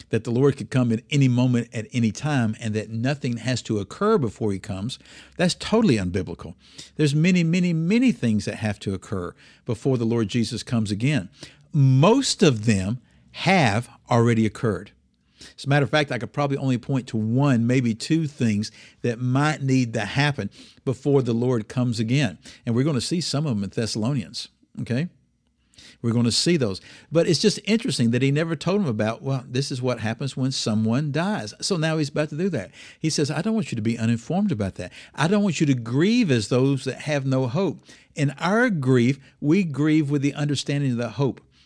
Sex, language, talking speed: male, English, 210 wpm